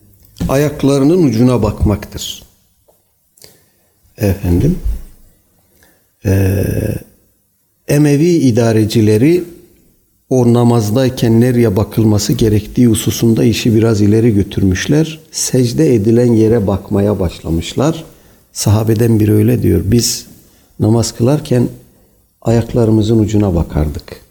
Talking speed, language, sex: 75 wpm, Turkish, male